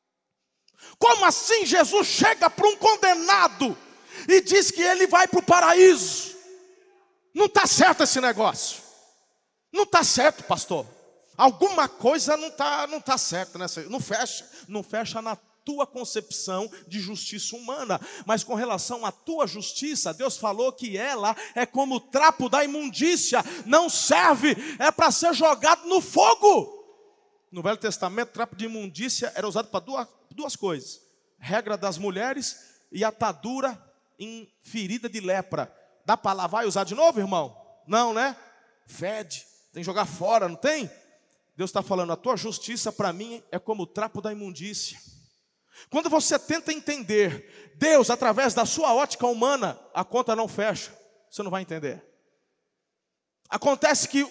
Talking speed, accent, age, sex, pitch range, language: 150 wpm, Brazilian, 40-59, male, 215-330 Hz, Portuguese